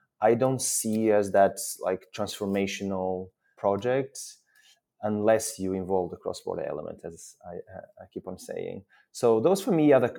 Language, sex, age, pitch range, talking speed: English, male, 20-39, 95-110 Hz, 160 wpm